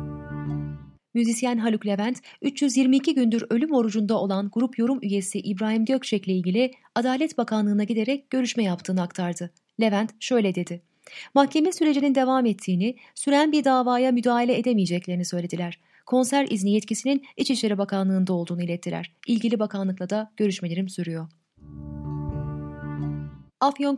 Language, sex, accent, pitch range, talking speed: Turkish, female, native, 185-260 Hz, 115 wpm